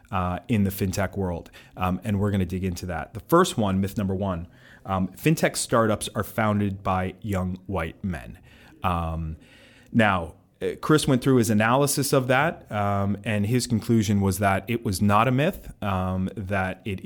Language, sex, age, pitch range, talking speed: English, male, 30-49, 95-110 Hz, 175 wpm